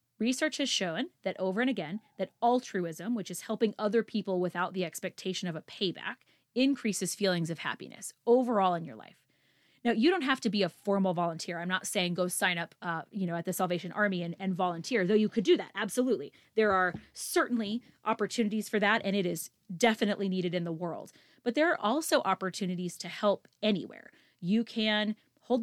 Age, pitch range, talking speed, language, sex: 20-39, 180-230 Hz, 195 wpm, English, female